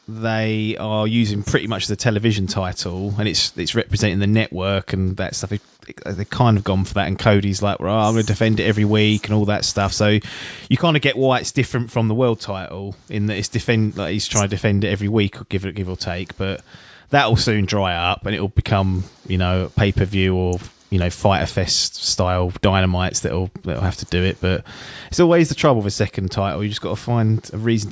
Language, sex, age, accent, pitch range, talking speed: English, male, 20-39, British, 100-120 Hz, 240 wpm